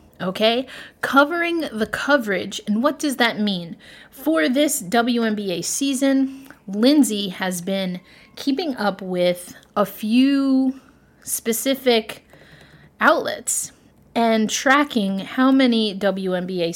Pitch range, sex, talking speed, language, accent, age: 195-260 Hz, female, 100 wpm, English, American, 30-49